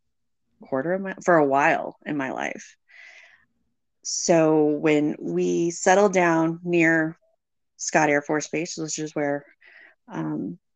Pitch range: 145-175 Hz